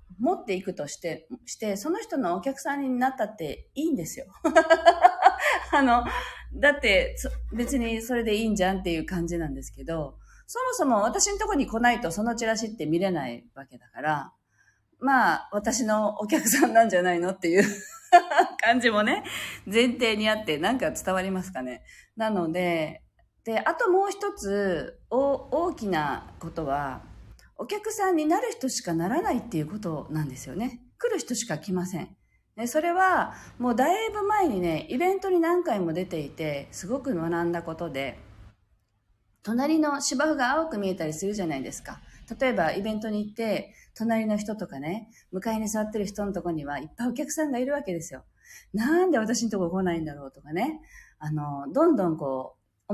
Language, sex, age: Japanese, female, 40-59